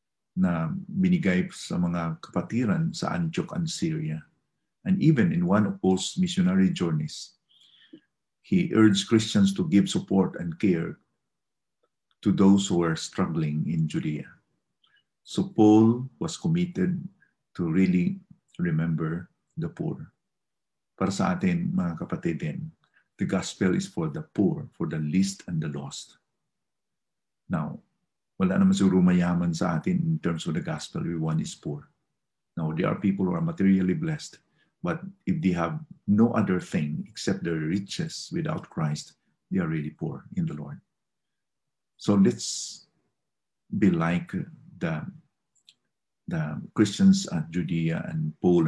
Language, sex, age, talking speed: English, male, 50-69, 130 wpm